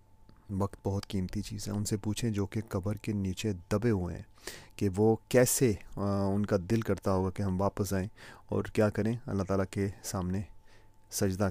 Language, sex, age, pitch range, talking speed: Urdu, male, 30-49, 95-110 Hz, 190 wpm